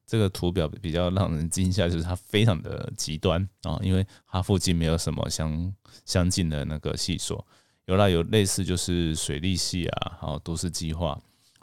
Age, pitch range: 20-39, 80-105 Hz